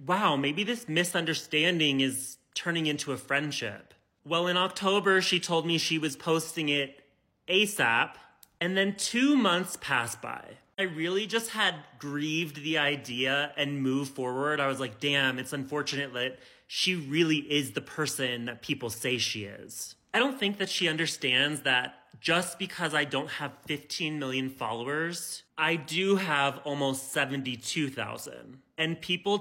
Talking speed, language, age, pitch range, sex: 155 wpm, English, 30-49, 130-170 Hz, male